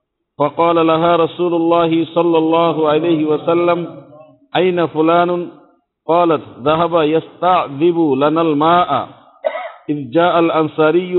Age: 50-69